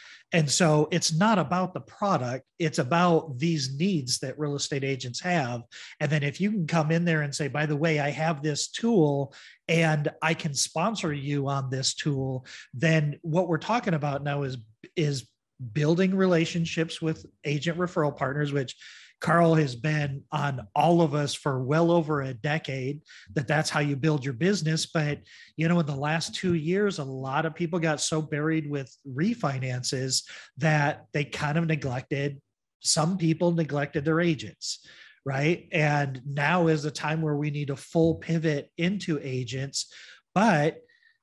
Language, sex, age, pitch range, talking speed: English, male, 40-59, 140-165 Hz, 170 wpm